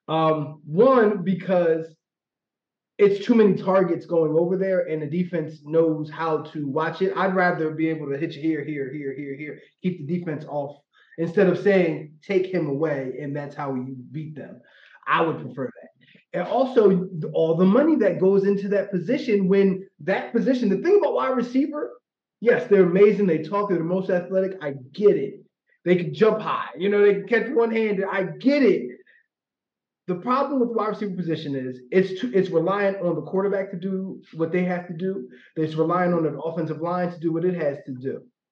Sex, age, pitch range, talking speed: male, 20-39, 155-195 Hz, 200 wpm